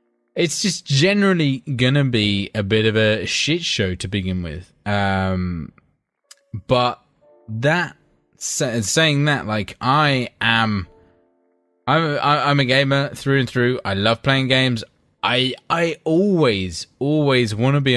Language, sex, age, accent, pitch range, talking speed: English, male, 20-39, British, 100-130 Hz, 140 wpm